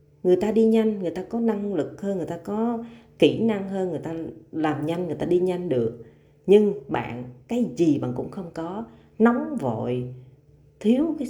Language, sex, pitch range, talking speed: Vietnamese, female, 125-190 Hz, 195 wpm